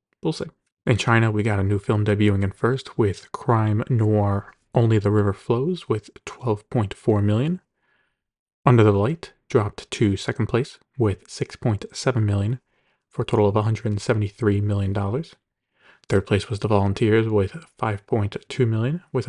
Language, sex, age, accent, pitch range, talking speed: English, male, 30-49, American, 105-125 Hz, 150 wpm